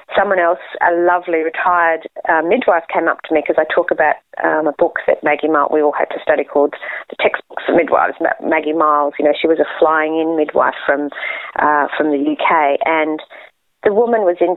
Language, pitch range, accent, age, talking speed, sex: English, 155-185 Hz, Australian, 40-59, 215 wpm, female